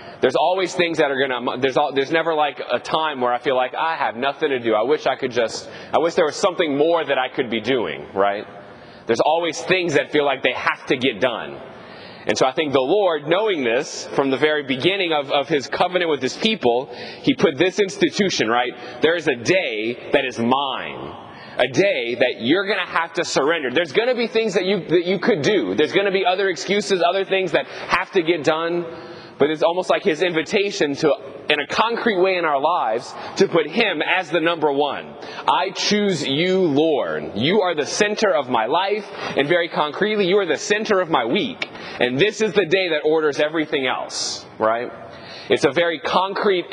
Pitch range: 145-195 Hz